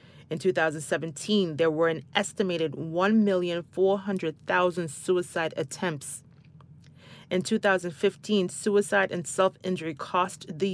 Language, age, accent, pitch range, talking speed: English, 30-49, American, 150-175 Hz, 90 wpm